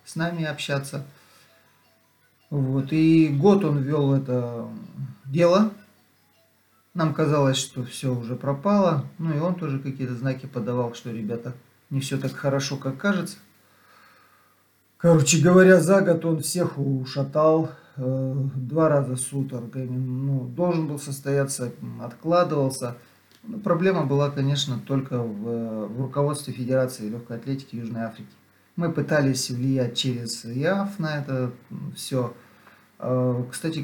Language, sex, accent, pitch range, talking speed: Russian, male, native, 125-155 Hz, 120 wpm